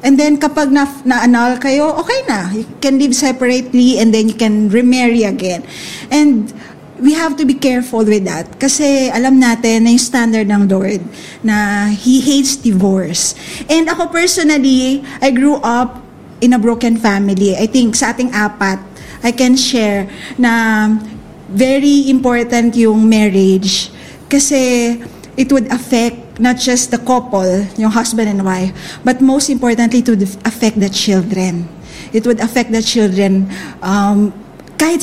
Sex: female